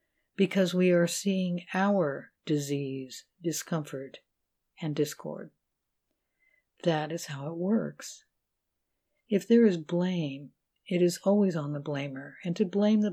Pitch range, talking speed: 150-190 Hz, 130 wpm